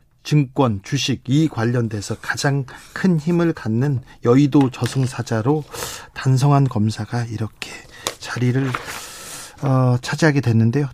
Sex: male